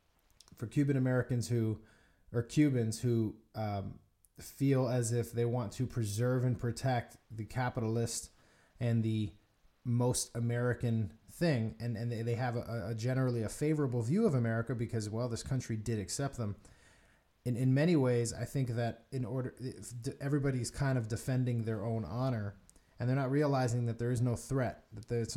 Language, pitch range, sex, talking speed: English, 110-135 Hz, male, 170 wpm